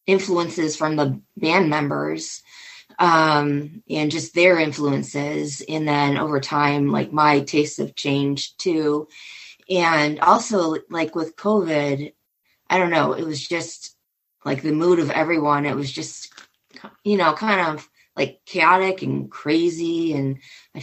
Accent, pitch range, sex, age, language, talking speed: American, 145-170 Hz, female, 20-39, English, 140 wpm